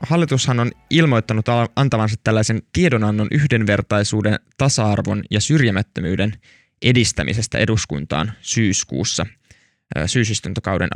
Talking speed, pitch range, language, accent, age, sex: 75 wpm, 105-115 Hz, Finnish, native, 20-39, male